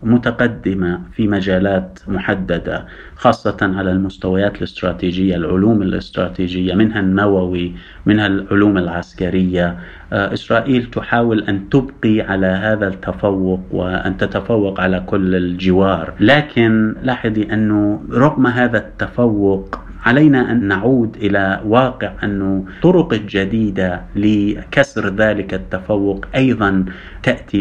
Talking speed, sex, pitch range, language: 100 wpm, male, 95-115 Hz, Arabic